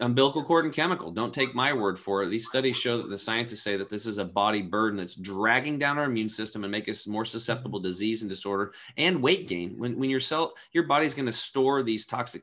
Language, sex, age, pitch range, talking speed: English, male, 30-49, 100-125 Hz, 250 wpm